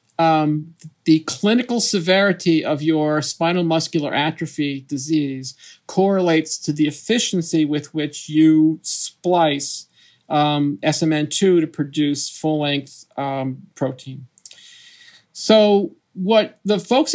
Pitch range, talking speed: 150-180 Hz, 110 wpm